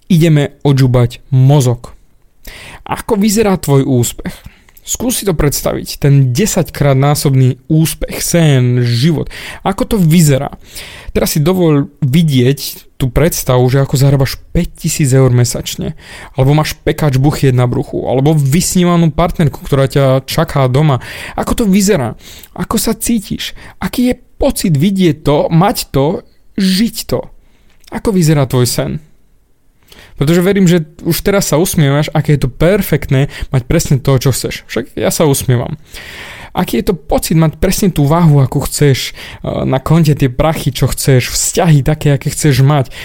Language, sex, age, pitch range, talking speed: Slovak, male, 30-49, 140-190 Hz, 145 wpm